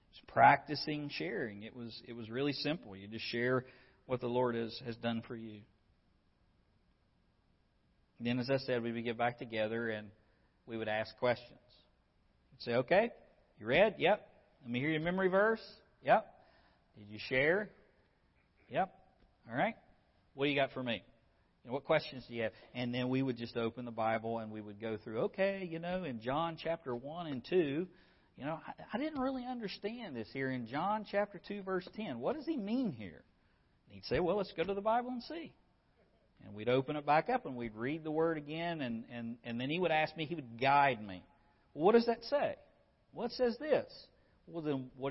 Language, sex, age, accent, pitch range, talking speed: English, male, 50-69, American, 120-190 Hz, 205 wpm